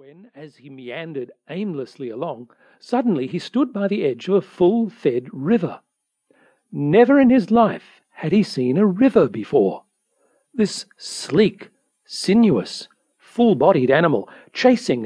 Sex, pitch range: male, 145-215 Hz